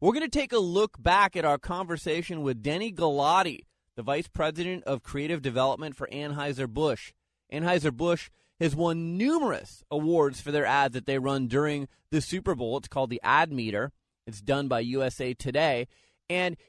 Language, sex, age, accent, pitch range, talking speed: English, male, 30-49, American, 135-175 Hz, 170 wpm